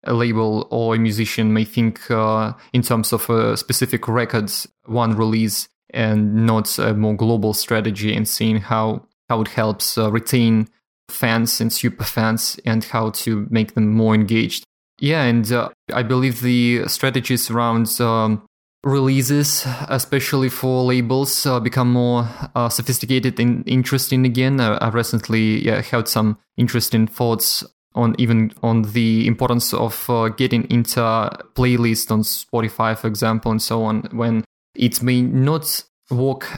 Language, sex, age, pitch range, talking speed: English, male, 20-39, 110-125 Hz, 150 wpm